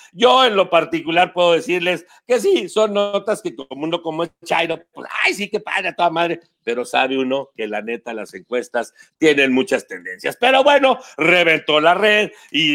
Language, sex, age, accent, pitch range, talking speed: English, male, 50-69, Mexican, 165-220 Hz, 190 wpm